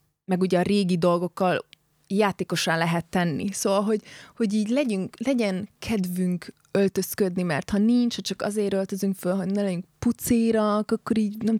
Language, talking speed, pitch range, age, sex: Hungarian, 160 wpm, 170-205 Hz, 20-39, female